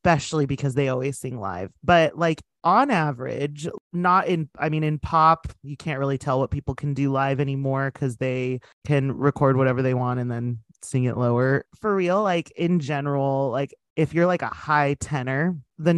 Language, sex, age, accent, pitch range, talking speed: English, male, 30-49, American, 135-175 Hz, 190 wpm